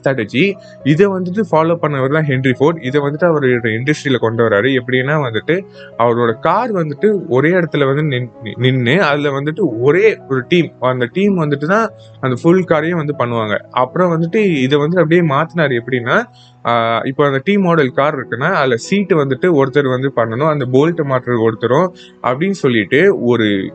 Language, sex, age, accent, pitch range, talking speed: Tamil, male, 20-39, native, 125-170 Hz, 160 wpm